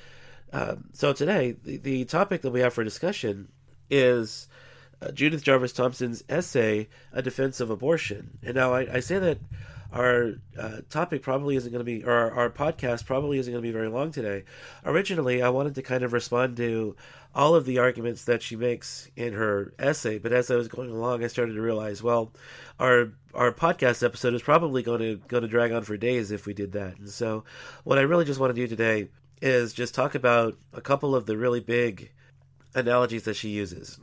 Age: 40-59